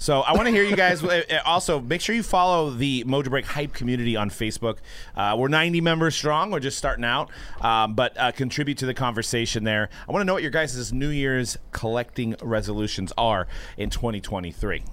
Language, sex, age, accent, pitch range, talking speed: English, male, 30-49, American, 110-150 Hz, 200 wpm